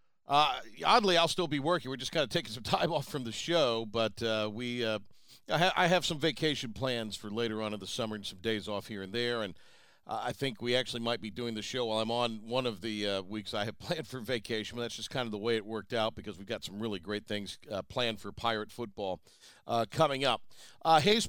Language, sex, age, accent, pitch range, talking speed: English, male, 50-69, American, 110-150 Hz, 260 wpm